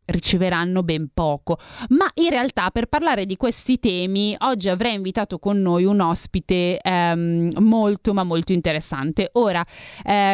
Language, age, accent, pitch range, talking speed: Italian, 30-49, native, 175-210 Hz, 145 wpm